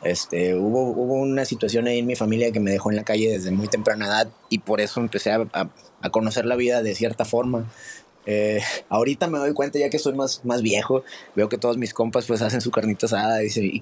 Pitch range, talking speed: 115-145 Hz, 240 wpm